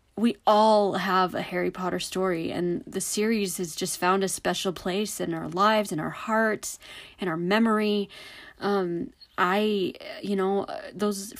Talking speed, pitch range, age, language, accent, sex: 160 wpm, 170-205 Hz, 30-49, English, American, female